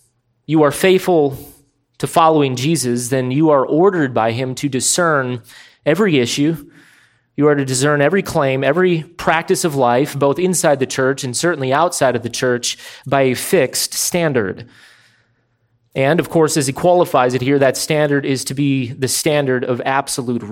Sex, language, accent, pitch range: male, English, American, 120-145 Hz